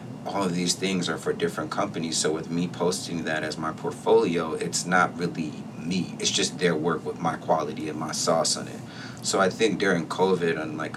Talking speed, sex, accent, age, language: 215 wpm, male, American, 30-49, English